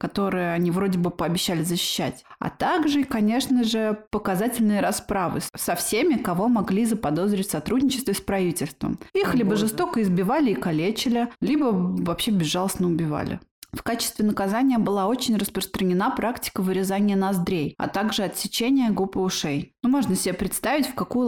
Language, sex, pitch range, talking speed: Russian, female, 180-220 Hz, 150 wpm